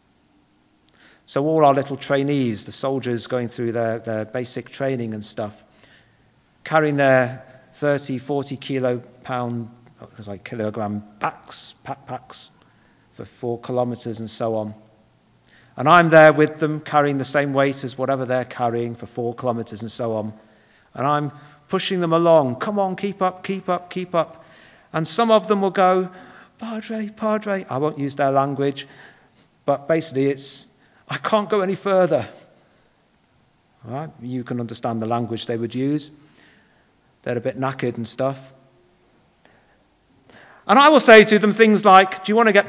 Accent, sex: British, male